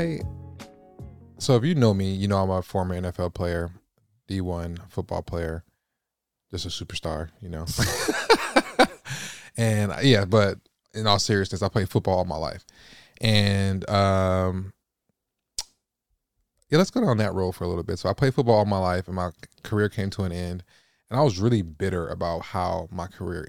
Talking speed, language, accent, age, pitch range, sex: 170 wpm, English, American, 20-39, 90-110 Hz, male